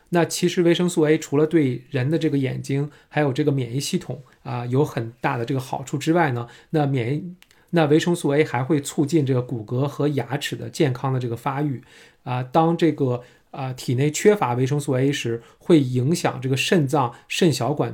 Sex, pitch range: male, 125-160 Hz